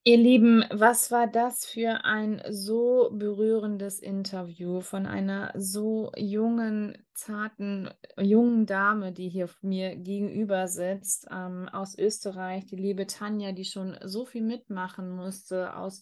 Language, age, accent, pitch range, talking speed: German, 20-39, German, 185-215 Hz, 130 wpm